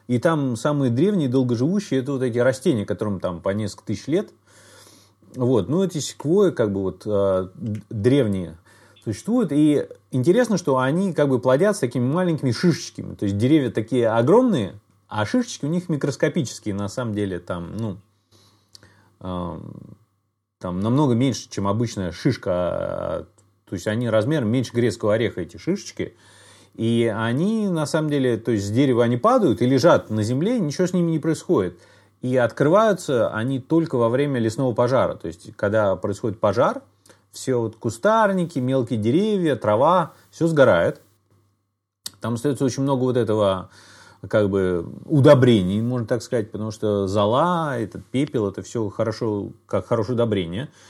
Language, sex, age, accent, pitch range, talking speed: Russian, male, 30-49, native, 105-140 Hz, 150 wpm